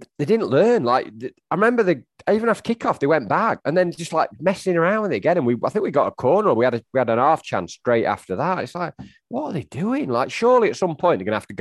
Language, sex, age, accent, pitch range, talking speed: English, male, 30-49, British, 100-145 Hz, 285 wpm